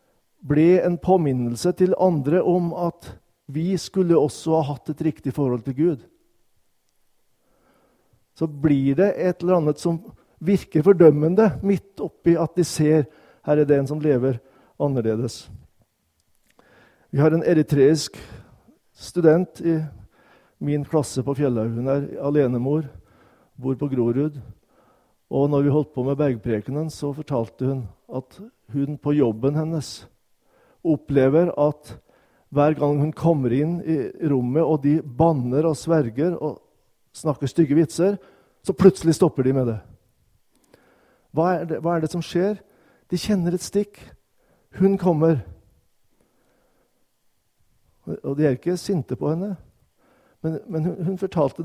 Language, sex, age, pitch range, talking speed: Danish, male, 50-69, 135-175 Hz, 135 wpm